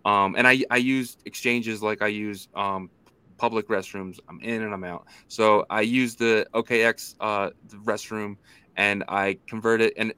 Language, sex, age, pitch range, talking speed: English, male, 20-39, 105-120 Hz, 175 wpm